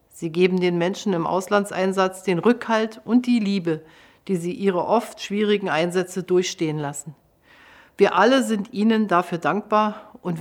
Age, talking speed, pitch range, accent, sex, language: 50-69, 150 wpm, 170-205 Hz, German, female, German